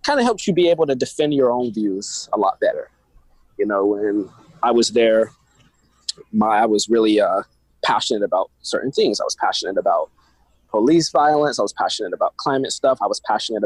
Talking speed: 195 wpm